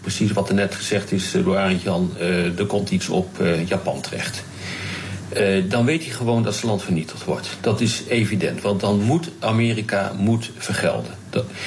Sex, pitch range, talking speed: male, 100-135 Hz, 165 wpm